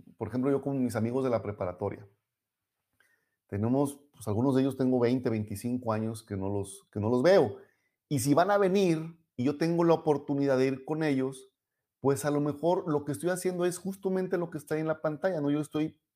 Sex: male